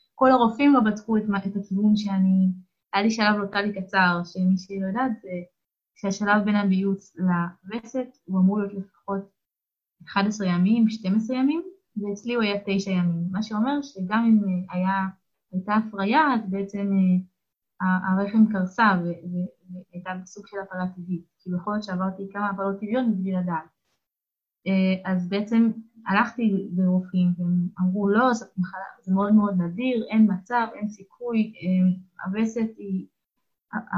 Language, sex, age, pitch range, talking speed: Hebrew, female, 20-39, 185-220 Hz, 135 wpm